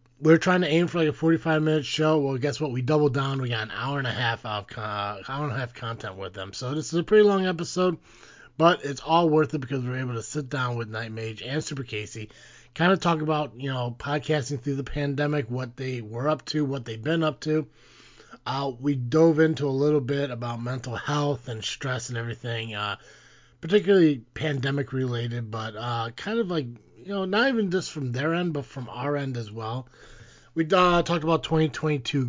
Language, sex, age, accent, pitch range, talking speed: English, male, 30-49, American, 115-155 Hz, 215 wpm